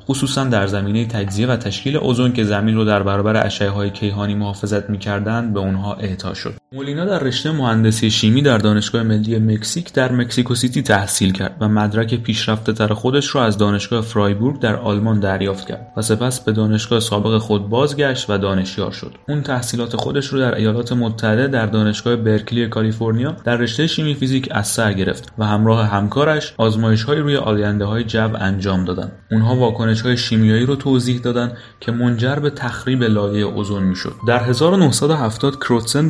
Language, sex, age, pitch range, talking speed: Persian, male, 30-49, 105-125 Hz, 170 wpm